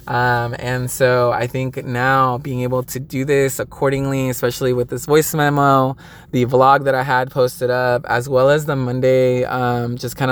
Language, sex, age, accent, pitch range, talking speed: English, male, 20-39, American, 125-135 Hz, 185 wpm